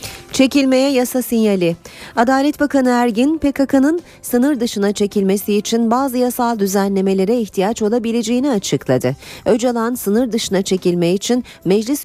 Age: 40-59